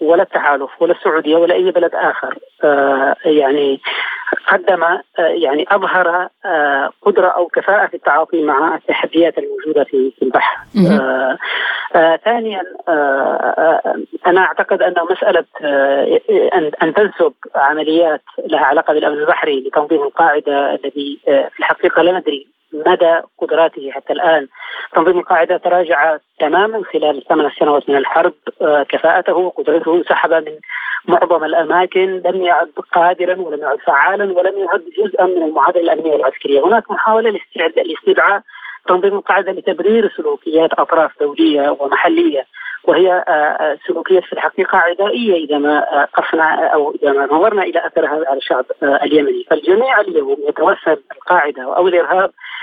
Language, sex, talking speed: Arabic, female, 135 wpm